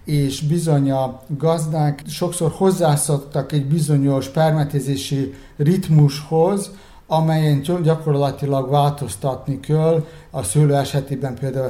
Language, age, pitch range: Hungarian, 60-79, 135-155 Hz